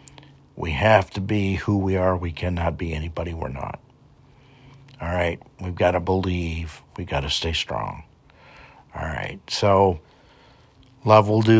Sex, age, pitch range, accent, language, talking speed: male, 60-79, 90-110 Hz, American, English, 155 wpm